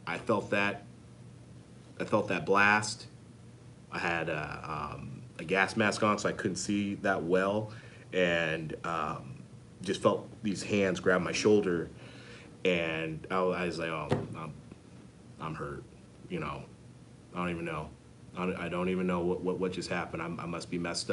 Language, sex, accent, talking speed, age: English, male, American, 165 wpm, 30-49